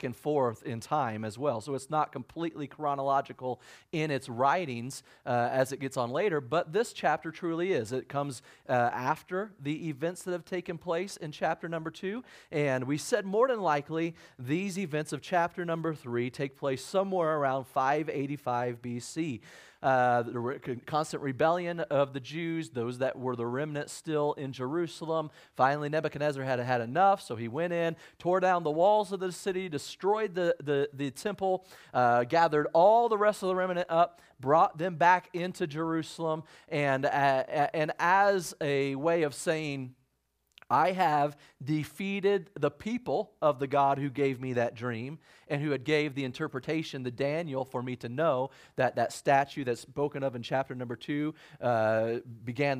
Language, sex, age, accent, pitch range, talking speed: English, male, 40-59, American, 130-165 Hz, 175 wpm